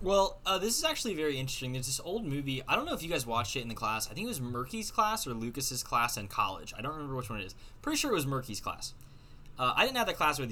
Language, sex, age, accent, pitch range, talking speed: English, male, 10-29, American, 110-150 Hz, 300 wpm